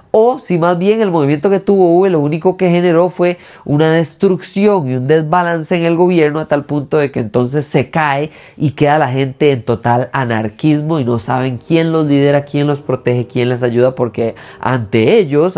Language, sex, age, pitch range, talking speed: Spanish, male, 20-39, 130-170 Hz, 195 wpm